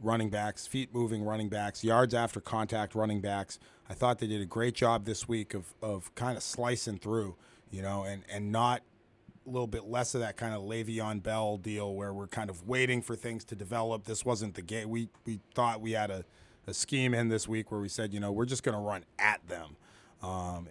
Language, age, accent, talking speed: English, 30-49, American, 230 wpm